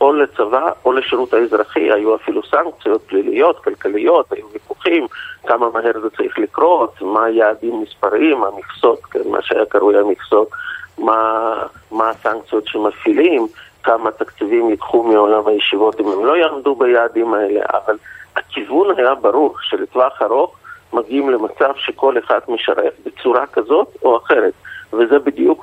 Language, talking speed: Hebrew, 140 wpm